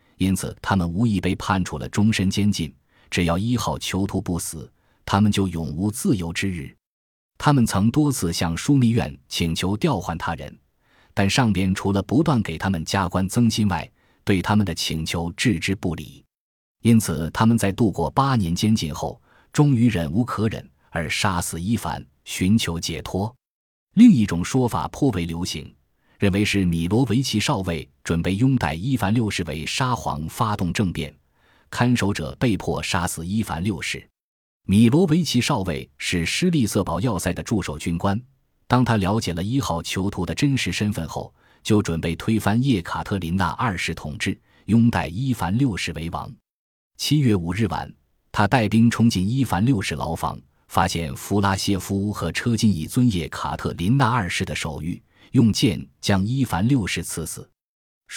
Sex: male